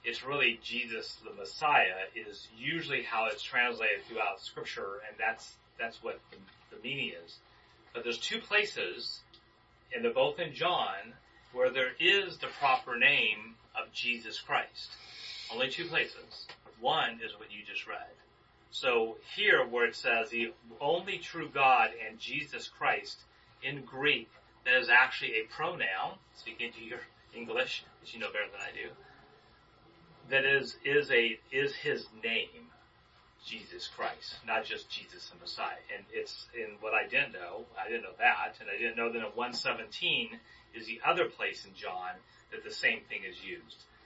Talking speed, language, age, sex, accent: 165 wpm, English, 30-49, male, American